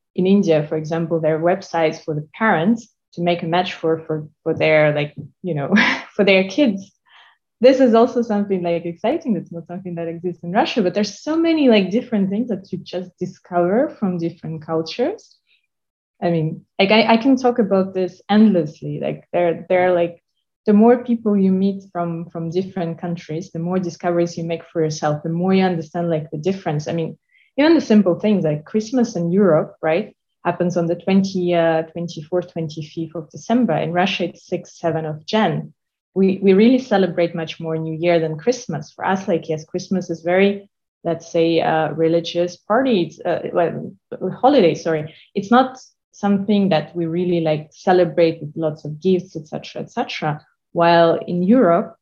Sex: female